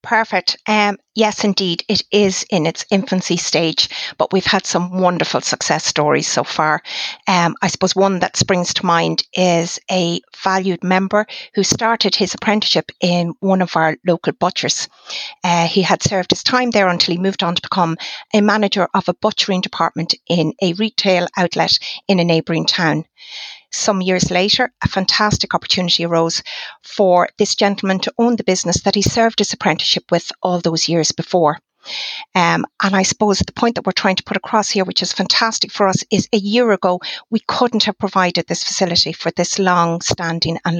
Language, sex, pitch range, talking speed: English, female, 170-205 Hz, 185 wpm